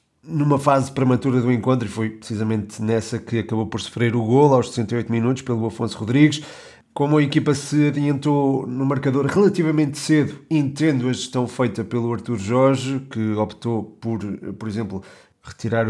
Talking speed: 160 wpm